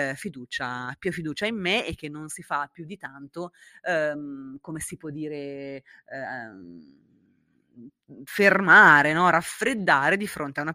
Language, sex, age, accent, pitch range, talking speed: Italian, female, 30-49, native, 145-180 Hz, 140 wpm